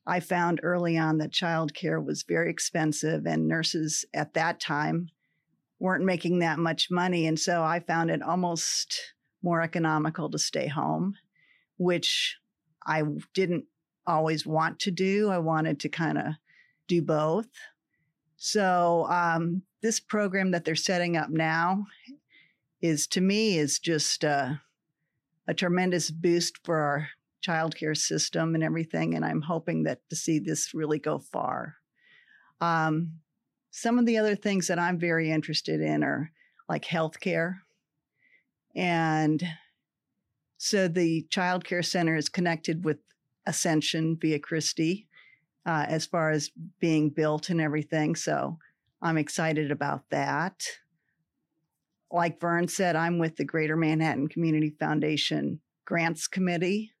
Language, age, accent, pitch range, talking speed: English, 50-69, American, 155-175 Hz, 140 wpm